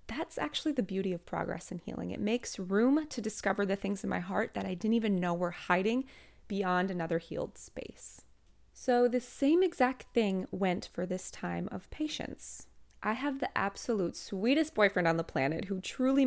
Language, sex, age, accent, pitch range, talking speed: English, female, 20-39, American, 180-245 Hz, 190 wpm